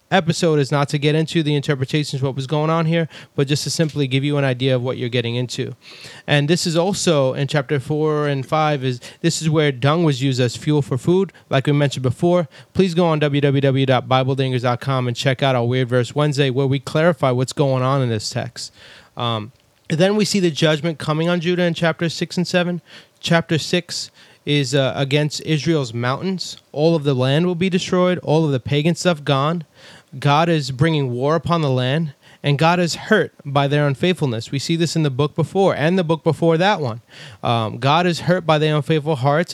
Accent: American